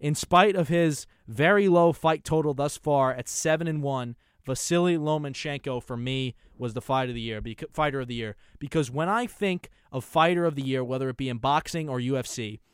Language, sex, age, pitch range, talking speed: English, male, 20-39, 130-160 Hz, 210 wpm